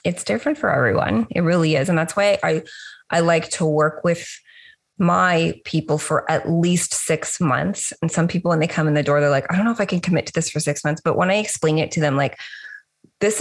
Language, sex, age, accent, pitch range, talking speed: English, female, 20-39, American, 150-185 Hz, 245 wpm